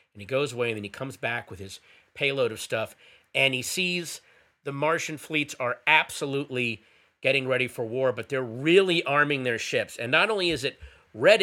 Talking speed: 200 wpm